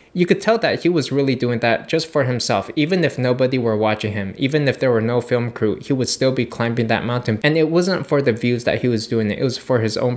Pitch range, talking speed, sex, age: 115-140 Hz, 275 wpm, male, 20-39